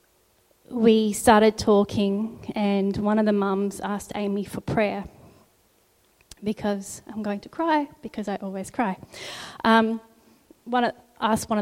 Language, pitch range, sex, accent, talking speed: English, 200-220 Hz, female, Australian, 130 wpm